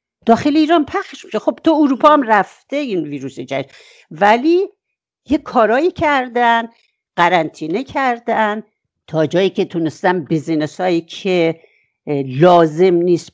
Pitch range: 170-275 Hz